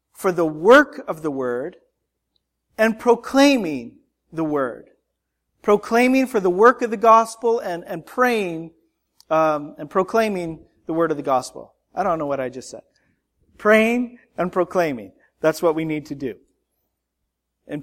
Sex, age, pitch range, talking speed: male, 40-59, 140-190 Hz, 150 wpm